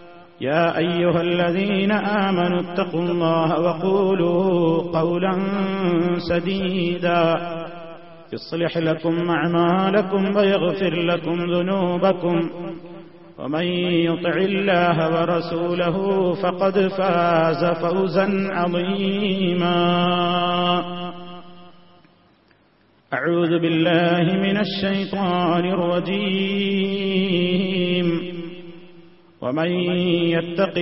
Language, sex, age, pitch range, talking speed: Malayalam, male, 40-59, 170-190 Hz, 60 wpm